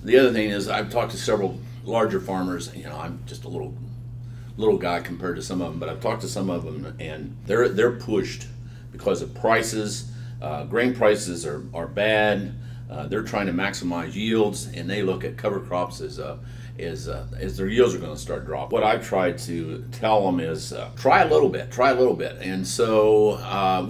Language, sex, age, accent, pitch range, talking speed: English, male, 50-69, American, 105-125 Hz, 215 wpm